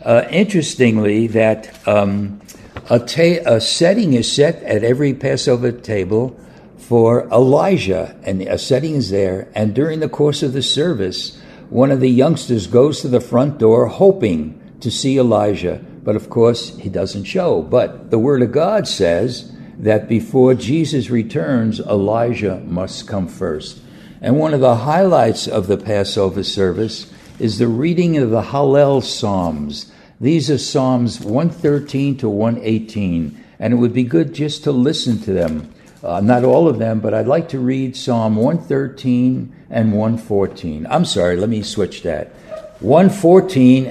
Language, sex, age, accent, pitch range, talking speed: English, male, 60-79, American, 110-145 Hz, 155 wpm